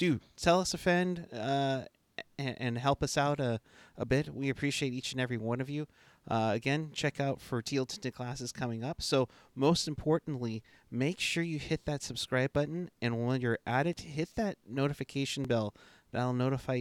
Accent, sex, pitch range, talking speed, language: American, male, 125-170 Hz, 190 wpm, English